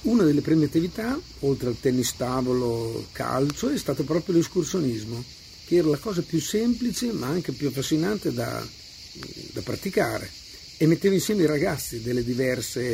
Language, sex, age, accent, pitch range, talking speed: Italian, male, 50-69, native, 120-160 Hz, 155 wpm